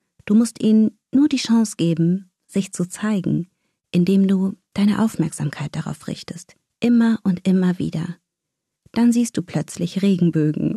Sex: female